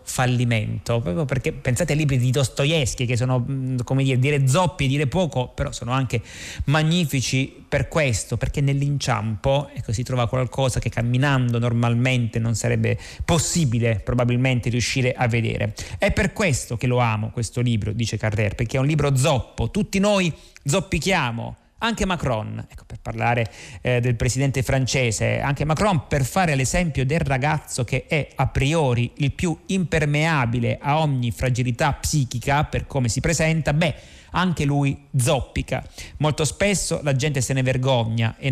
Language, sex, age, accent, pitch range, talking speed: Italian, male, 30-49, native, 120-145 Hz, 155 wpm